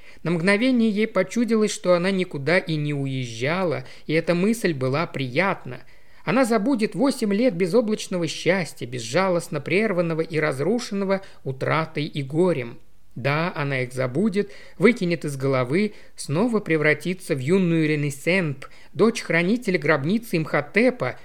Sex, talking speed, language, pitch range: male, 120 wpm, Russian, 150-205 Hz